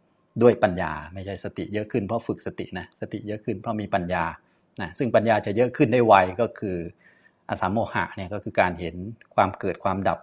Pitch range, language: 95-115 Hz, Thai